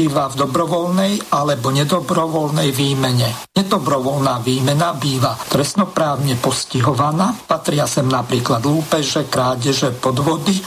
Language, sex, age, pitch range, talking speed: Slovak, male, 50-69, 135-170 Hz, 90 wpm